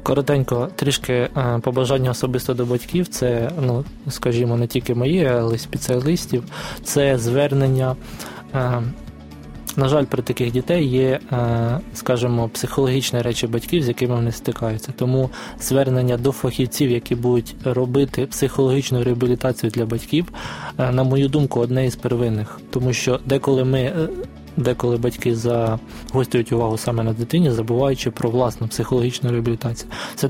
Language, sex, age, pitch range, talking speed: Ukrainian, male, 20-39, 120-135 Hz, 130 wpm